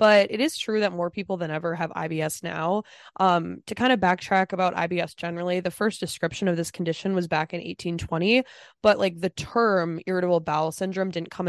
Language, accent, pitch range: English, American, 165-200 Hz